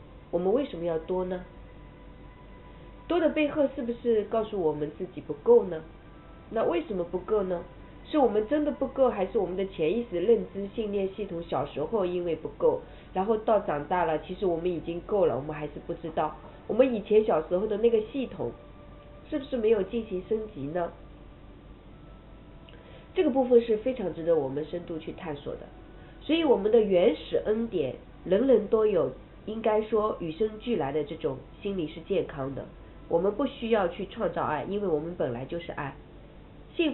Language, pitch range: Chinese, 170-235 Hz